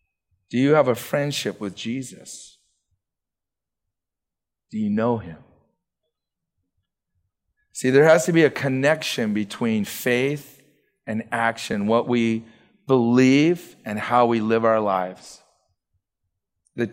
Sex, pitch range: male, 120-165 Hz